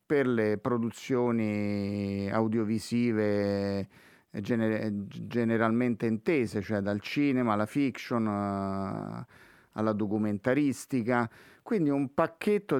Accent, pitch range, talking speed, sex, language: native, 105-135 Hz, 75 wpm, male, Italian